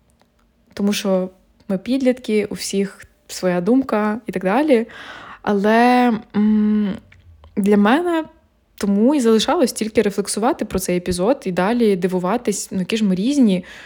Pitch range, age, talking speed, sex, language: 190-230 Hz, 20-39, 130 wpm, female, Ukrainian